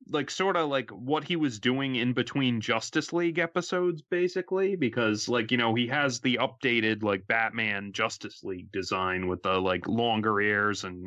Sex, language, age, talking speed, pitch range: male, English, 30-49, 180 wpm, 100-130 Hz